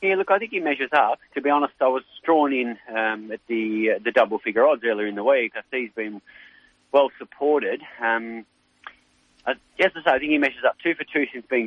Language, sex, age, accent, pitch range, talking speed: English, male, 30-49, Australian, 110-140 Hz, 230 wpm